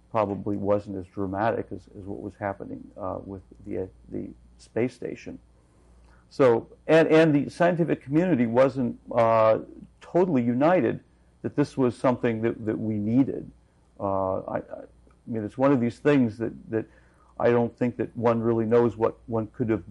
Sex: male